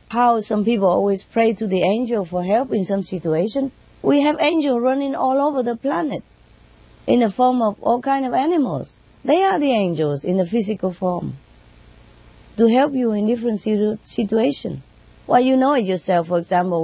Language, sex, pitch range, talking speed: English, female, 160-245 Hz, 180 wpm